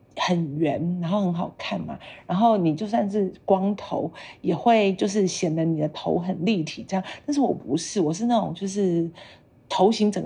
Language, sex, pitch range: Chinese, female, 160-205 Hz